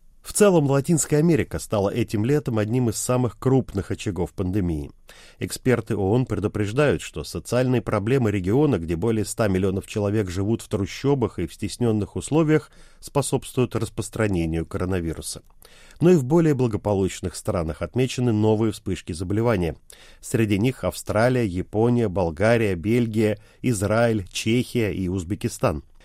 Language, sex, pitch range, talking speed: Russian, male, 100-140 Hz, 125 wpm